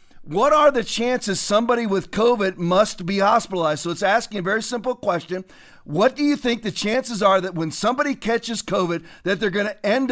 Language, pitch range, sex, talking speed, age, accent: English, 190-255 Hz, male, 200 wpm, 40-59, American